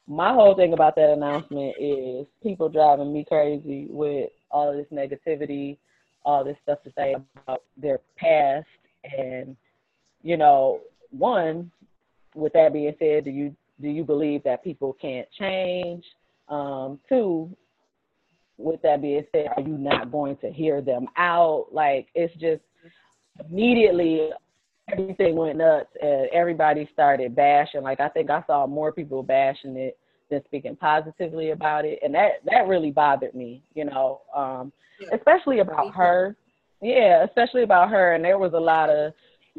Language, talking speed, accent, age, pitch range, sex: English, 155 wpm, American, 20-39, 145-195 Hz, female